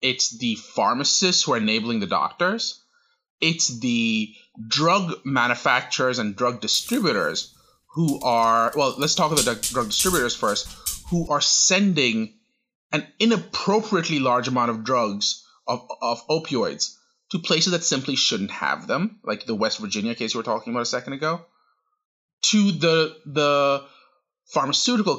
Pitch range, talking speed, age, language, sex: 125-210 Hz, 145 wpm, 30-49, English, male